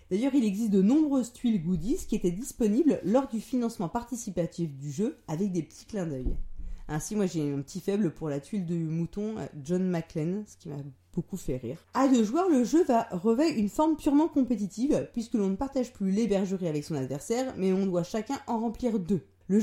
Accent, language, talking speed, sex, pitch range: French, French, 210 wpm, female, 170-255 Hz